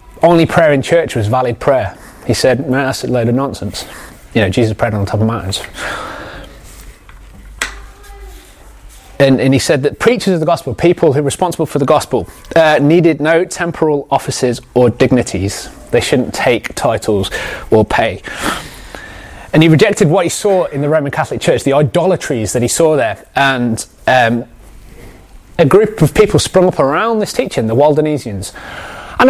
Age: 30-49